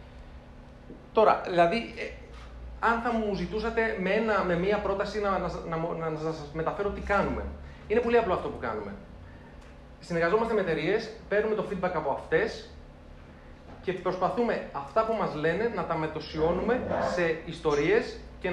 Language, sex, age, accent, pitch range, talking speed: Greek, male, 30-49, native, 160-210 Hz, 140 wpm